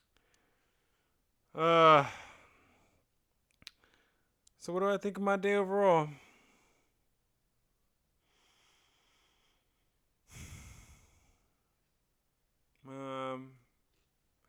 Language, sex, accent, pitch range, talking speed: English, male, American, 115-135 Hz, 45 wpm